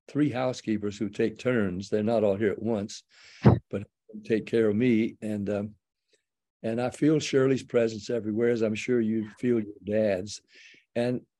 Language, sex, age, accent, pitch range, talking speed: English, male, 60-79, American, 105-125 Hz, 170 wpm